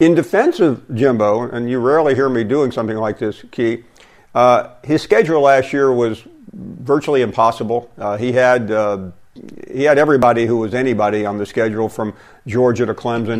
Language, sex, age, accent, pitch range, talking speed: English, male, 50-69, American, 115-145 Hz, 175 wpm